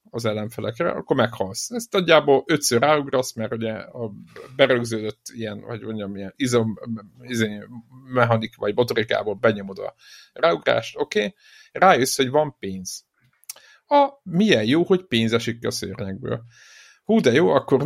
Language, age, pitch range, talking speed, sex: Hungarian, 50-69, 115-145 Hz, 145 wpm, male